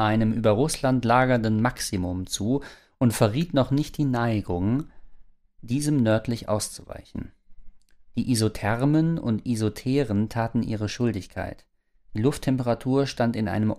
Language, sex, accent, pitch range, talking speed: German, male, German, 105-135 Hz, 120 wpm